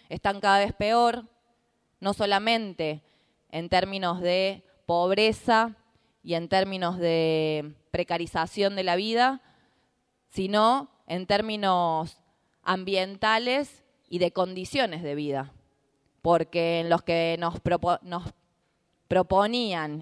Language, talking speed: Spanish, 95 wpm